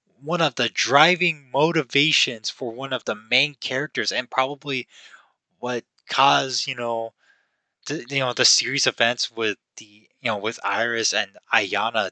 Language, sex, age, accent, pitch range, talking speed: English, male, 20-39, American, 105-135 Hz, 155 wpm